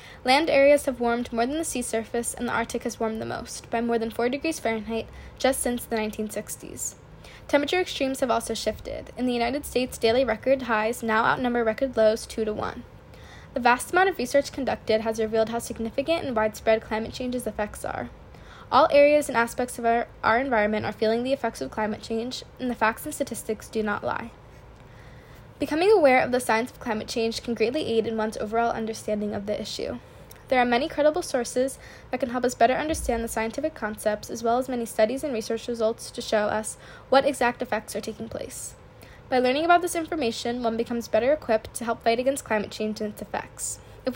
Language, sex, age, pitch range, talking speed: English, female, 10-29, 220-260 Hz, 205 wpm